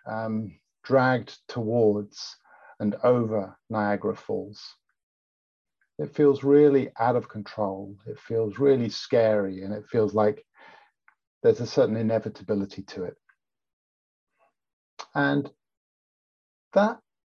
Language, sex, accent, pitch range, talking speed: English, male, British, 105-135 Hz, 100 wpm